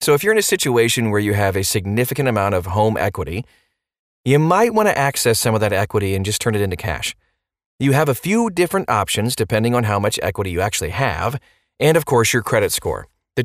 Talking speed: 225 wpm